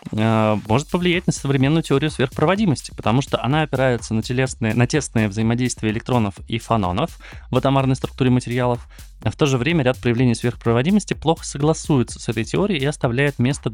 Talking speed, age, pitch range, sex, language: 160 wpm, 20-39, 105-130 Hz, male, Russian